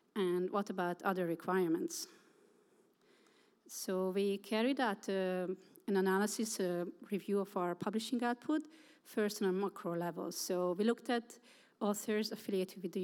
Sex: female